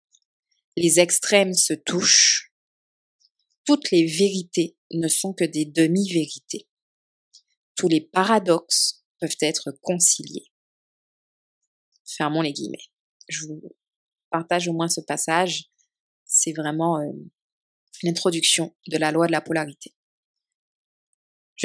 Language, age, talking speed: French, 20-39, 105 wpm